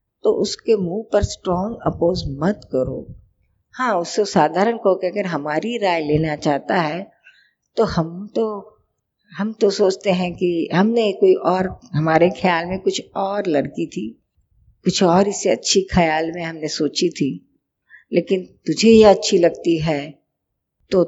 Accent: native